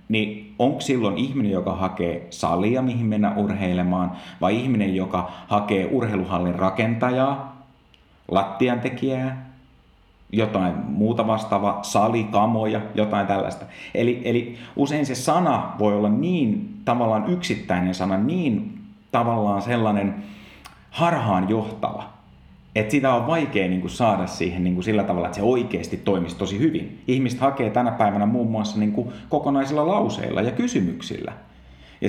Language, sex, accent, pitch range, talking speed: Finnish, male, native, 95-120 Hz, 125 wpm